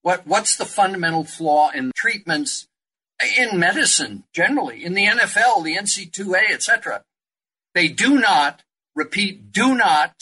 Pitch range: 170-240 Hz